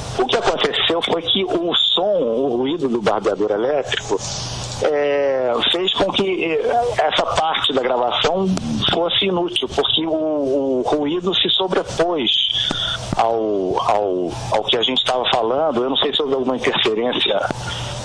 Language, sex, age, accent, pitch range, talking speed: Portuguese, male, 60-79, Brazilian, 125-165 Hz, 135 wpm